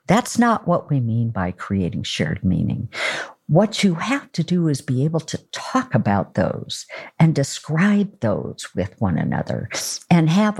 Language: English